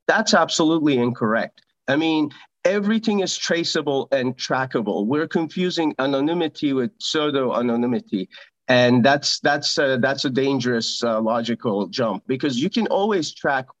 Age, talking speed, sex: 40-59, 135 wpm, male